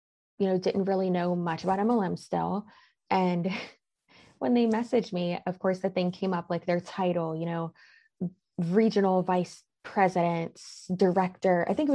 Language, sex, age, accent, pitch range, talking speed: English, female, 20-39, American, 170-210 Hz, 160 wpm